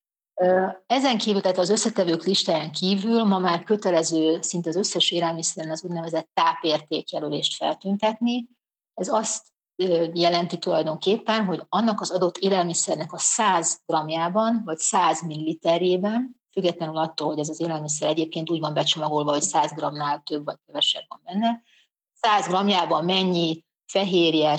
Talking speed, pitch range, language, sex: 135 wpm, 160-200 Hz, Hungarian, female